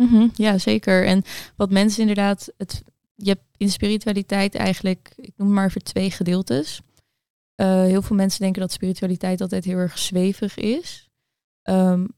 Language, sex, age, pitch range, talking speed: Dutch, female, 20-39, 180-200 Hz, 160 wpm